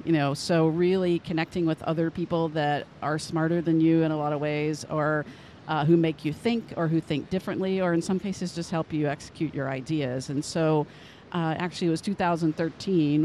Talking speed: 205 wpm